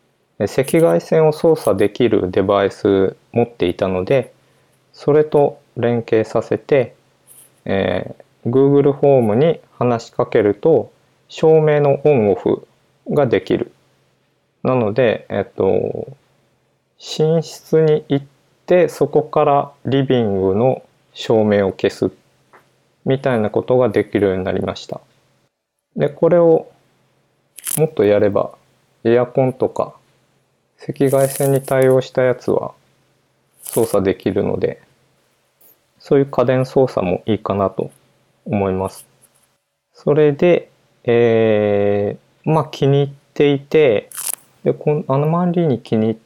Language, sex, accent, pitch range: Japanese, male, native, 110-150 Hz